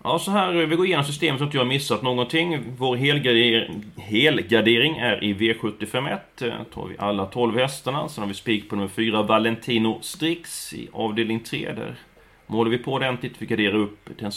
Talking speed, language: 190 wpm, Swedish